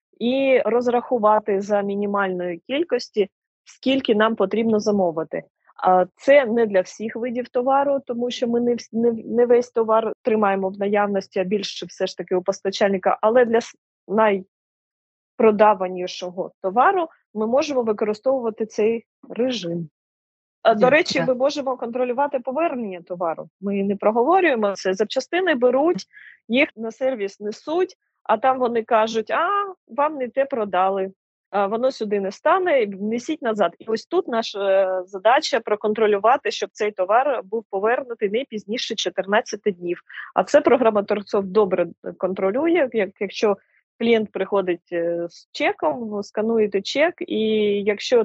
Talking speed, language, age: 130 wpm, Ukrainian, 20-39